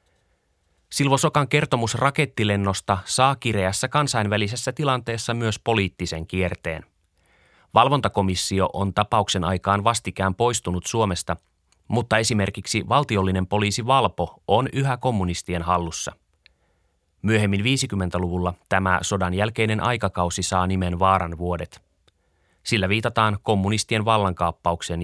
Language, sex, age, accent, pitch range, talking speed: Finnish, male, 30-49, native, 90-115 Hz, 95 wpm